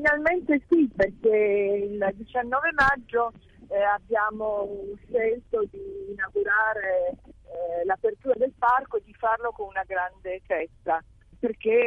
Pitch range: 195-245 Hz